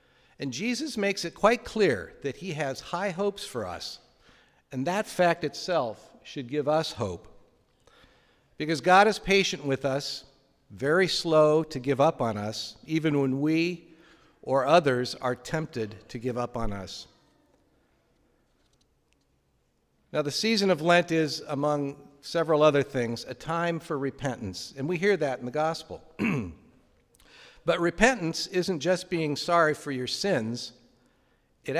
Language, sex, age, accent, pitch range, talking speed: English, male, 50-69, American, 135-175 Hz, 145 wpm